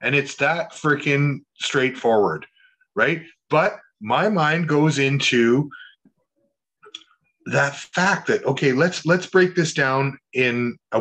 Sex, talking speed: male, 120 wpm